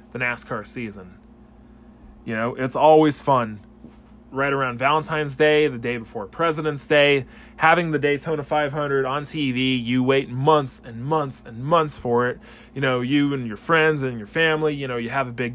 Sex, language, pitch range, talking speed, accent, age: male, English, 130-155 Hz, 180 wpm, American, 20-39